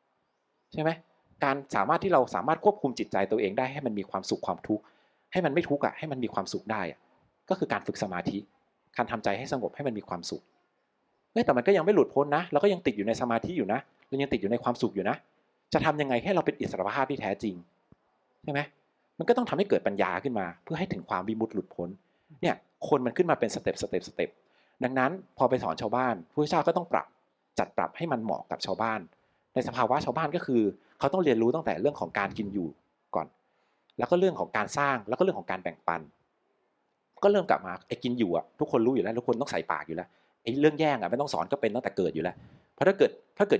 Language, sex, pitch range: Thai, male, 110-150 Hz